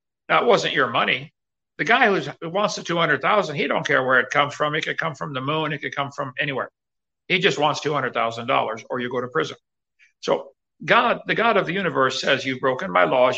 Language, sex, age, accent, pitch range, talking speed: English, male, 60-79, American, 145-185 Hz, 220 wpm